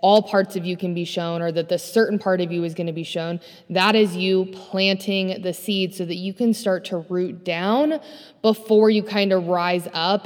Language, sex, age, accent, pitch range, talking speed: English, female, 20-39, American, 170-205 Hz, 230 wpm